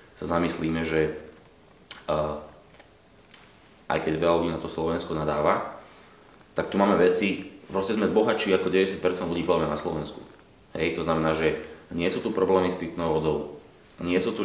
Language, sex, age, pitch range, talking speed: Slovak, male, 30-49, 80-85 Hz, 160 wpm